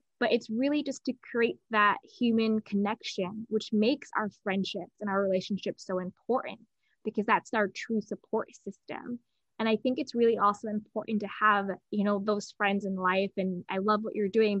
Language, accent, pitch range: English, American, 190-220 Hz